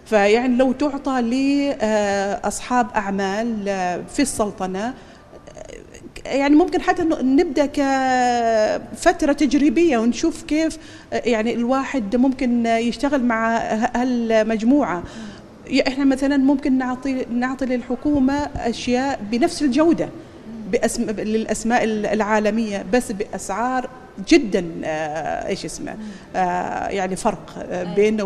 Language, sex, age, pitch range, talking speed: Arabic, female, 40-59, 210-265 Hz, 85 wpm